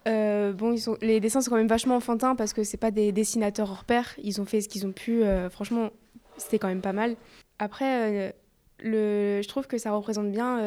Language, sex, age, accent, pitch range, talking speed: French, female, 20-39, French, 200-225 Hz, 240 wpm